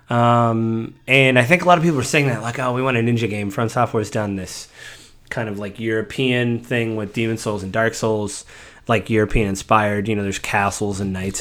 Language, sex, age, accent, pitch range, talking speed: English, male, 30-49, American, 105-125 Hz, 225 wpm